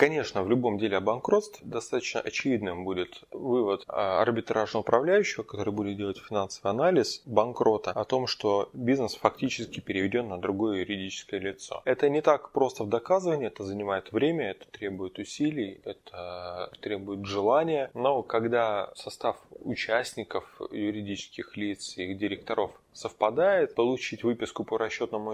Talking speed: 135 wpm